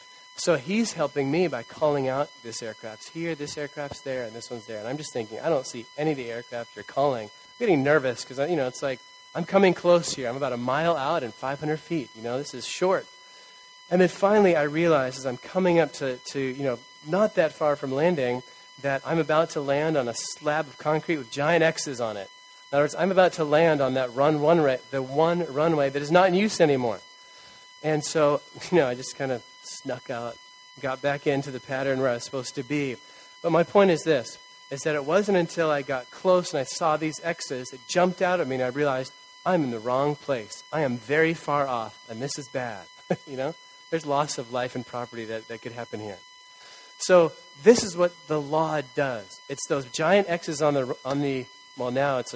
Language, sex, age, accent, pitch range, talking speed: English, male, 30-49, American, 135-180 Hz, 230 wpm